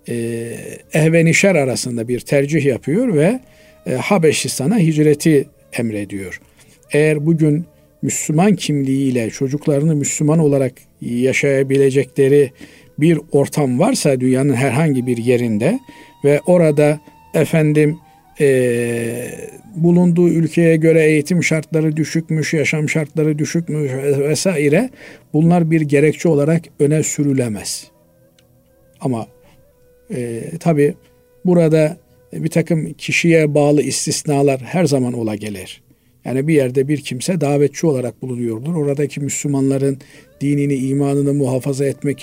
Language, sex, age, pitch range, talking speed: Turkish, male, 50-69, 130-155 Hz, 105 wpm